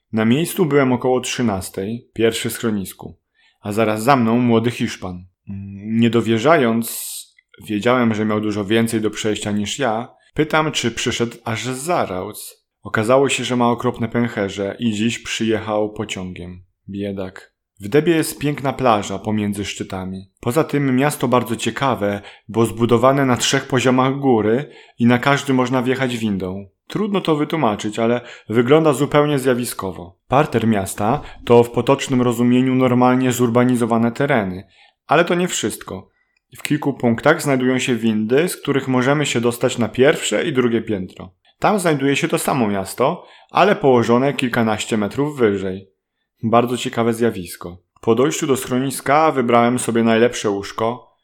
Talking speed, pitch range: 145 wpm, 105-130 Hz